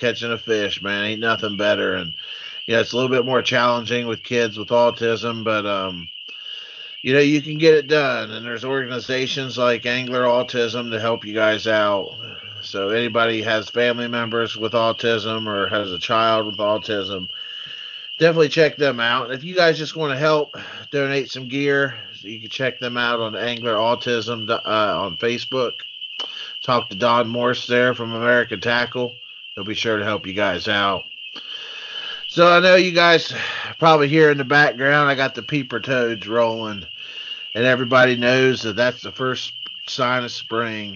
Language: English